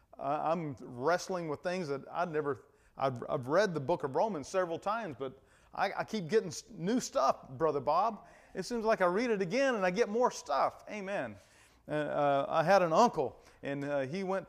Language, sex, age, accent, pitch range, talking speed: English, male, 40-59, American, 140-215 Hz, 195 wpm